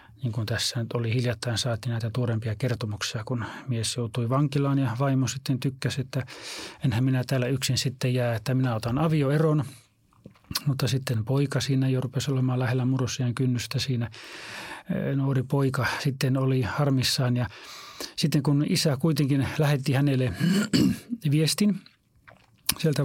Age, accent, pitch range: 30-49, native, 125-145 Hz